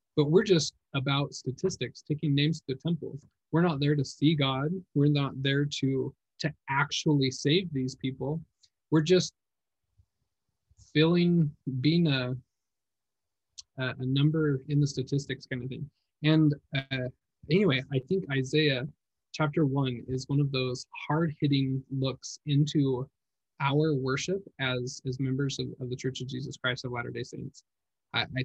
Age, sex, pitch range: 20-39, male, 125-150 Hz